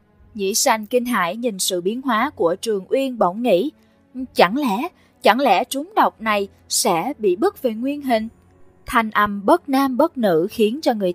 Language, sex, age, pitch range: English, female, 20-39, 195-270 Hz